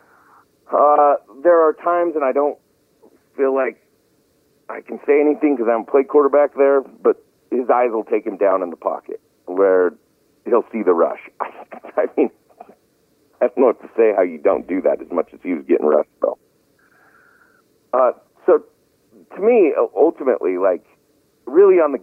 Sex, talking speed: male, 175 wpm